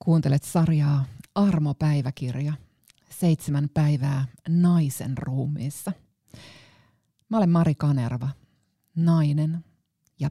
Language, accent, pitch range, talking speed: Finnish, native, 135-165 Hz, 75 wpm